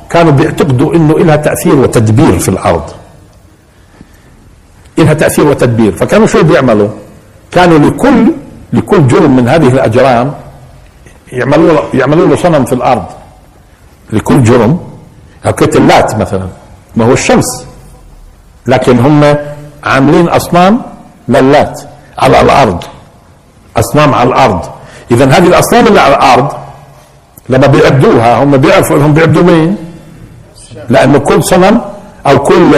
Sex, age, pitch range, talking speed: male, 60-79, 120-175 Hz, 115 wpm